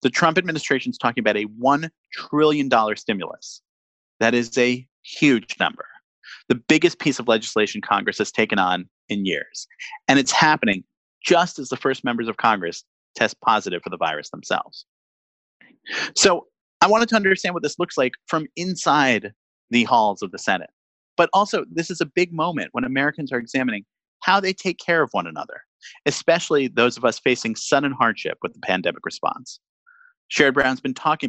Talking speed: 175 wpm